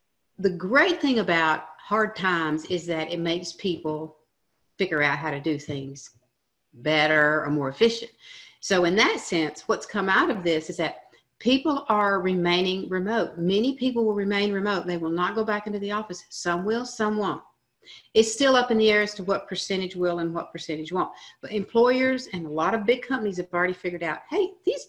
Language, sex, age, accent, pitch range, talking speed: English, female, 50-69, American, 165-220 Hz, 200 wpm